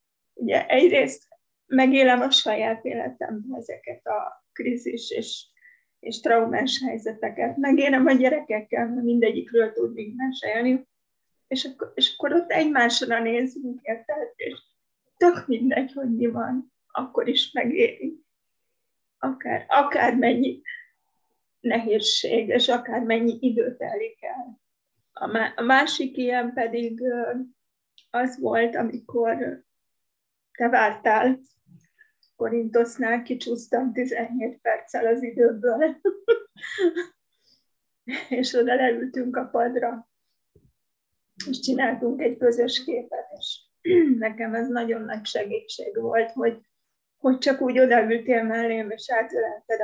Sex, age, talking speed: female, 30-49, 100 wpm